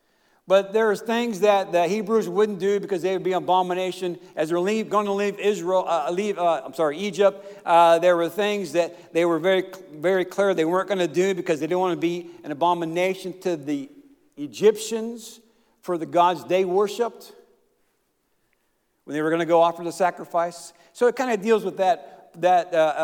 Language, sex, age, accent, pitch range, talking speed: English, male, 50-69, American, 165-210 Hz, 195 wpm